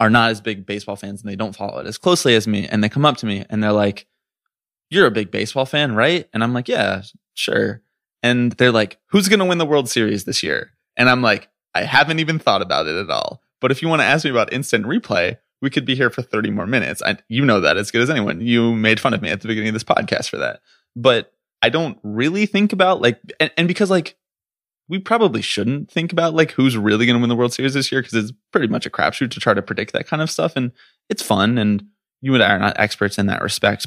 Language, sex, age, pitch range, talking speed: English, male, 20-39, 105-150 Hz, 265 wpm